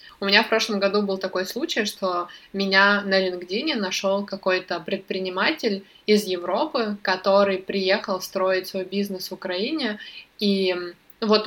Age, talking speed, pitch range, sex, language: 20-39, 135 wpm, 185-205 Hz, female, Russian